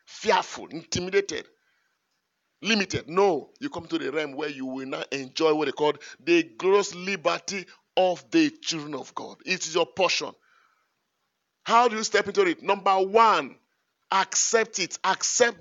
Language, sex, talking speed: English, male, 155 wpm